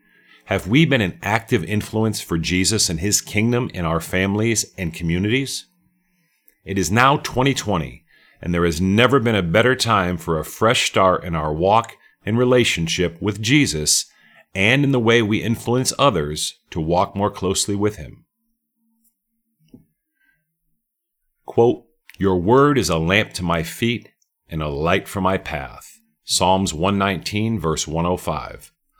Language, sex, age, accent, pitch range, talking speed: English, male, 40-59, American, 85-125 Hz, 145 wpm